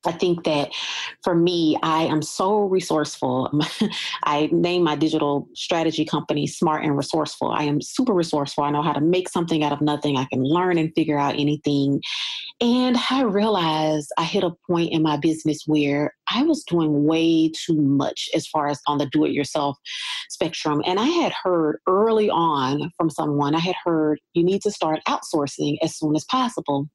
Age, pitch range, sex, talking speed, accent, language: 30-49, 150-185 Hz, female, 185 wpm, American, English